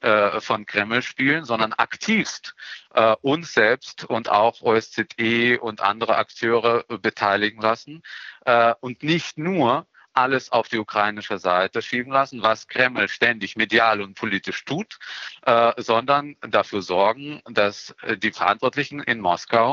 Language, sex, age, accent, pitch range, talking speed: German, male, 50-69, German, 110-135 Hz, 130 wpm